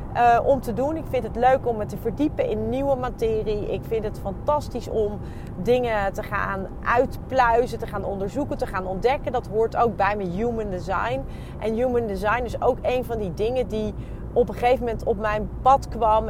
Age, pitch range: 30-49, 210-260 Hz